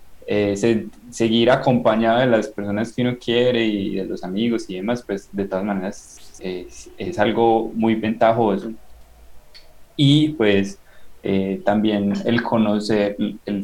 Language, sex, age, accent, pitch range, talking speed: Spanish, male, 20-39, Colombian, 100-120 Hz, 140 wpm